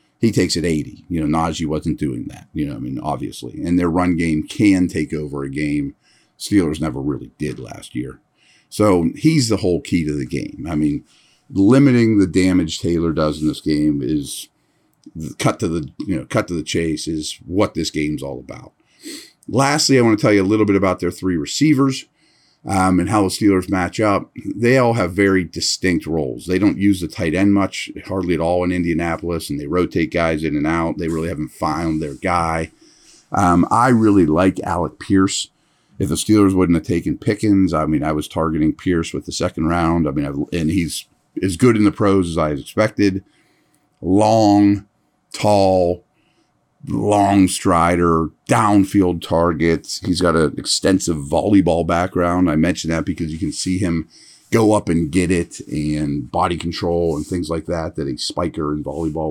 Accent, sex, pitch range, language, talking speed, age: American, male, 80-105 Hz, English, 190 wpm, 50-69